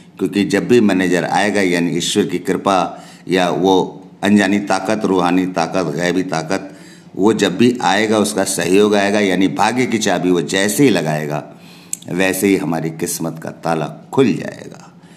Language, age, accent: Hindi, 50-69, native